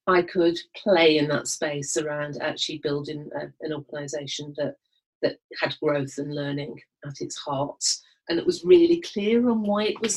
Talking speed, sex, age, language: 175 wpm, female, 40-59, English